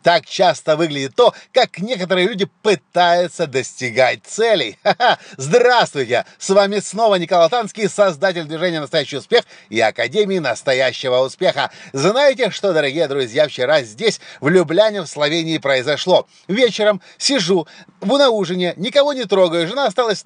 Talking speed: 130 wpm